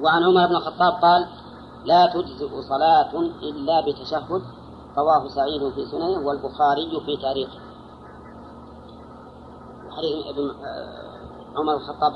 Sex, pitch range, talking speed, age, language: female, 150-180 Hz, 105 wpm, 40-59, Arabic